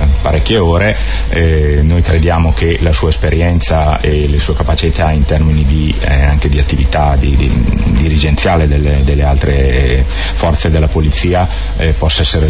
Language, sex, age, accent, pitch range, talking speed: Italian, male, 30-49, native, 75-85 Hz, 165 wpm